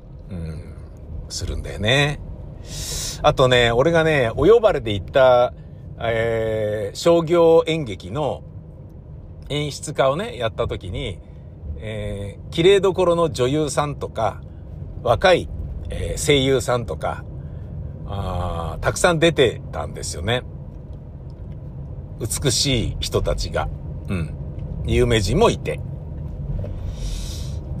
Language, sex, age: Japanese, male, 60-79